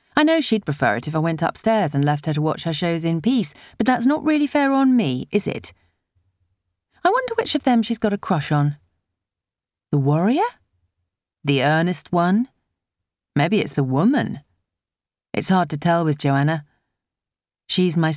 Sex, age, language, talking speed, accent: female, 30-49, English, 180 wpm, British